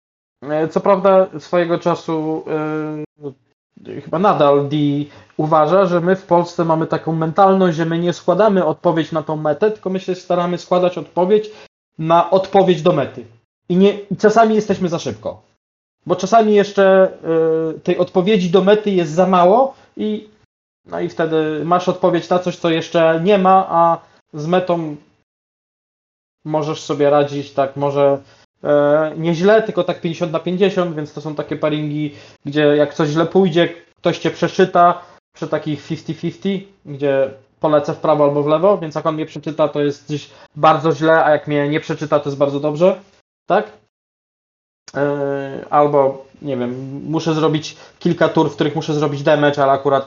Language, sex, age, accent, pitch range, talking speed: Polish, male, 20-39, native, 145-175 Hz, 160 wpm